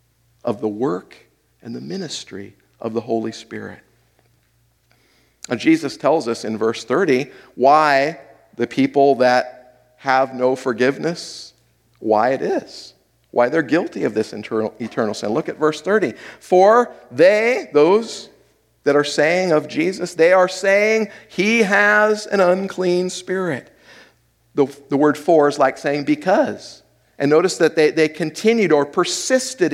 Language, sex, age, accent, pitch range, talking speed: English, male, 50-69, American, 135-200 Hz, 140 wpm